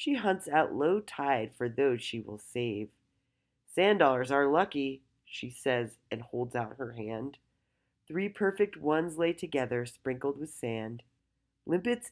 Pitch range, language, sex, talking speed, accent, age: 125-165 Hz, English, female, 150 wpm, American, 30-49